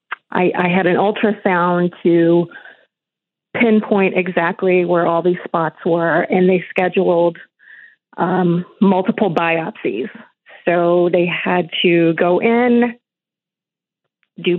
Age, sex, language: 30-49, female, English